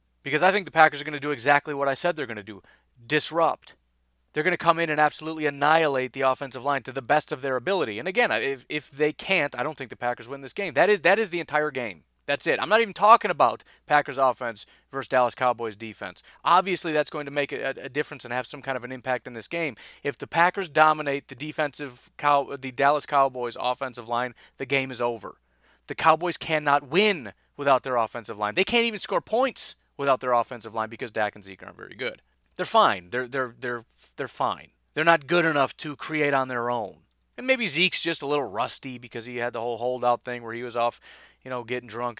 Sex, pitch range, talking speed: male, 115-150 Hz, 235 wpm